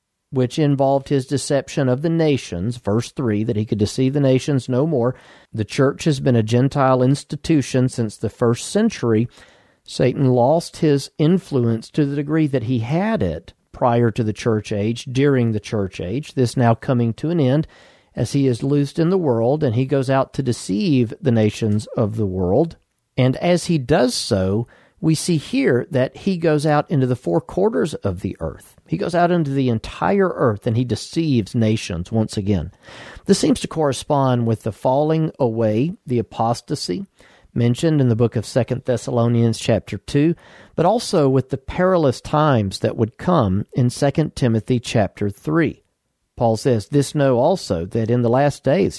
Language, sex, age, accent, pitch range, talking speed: English, male, 50-69, American, 115-145 Hz, 180 wpm